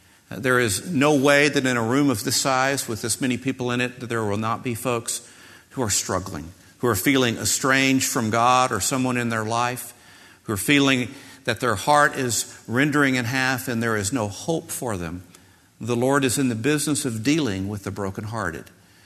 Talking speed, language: 205 wpm, English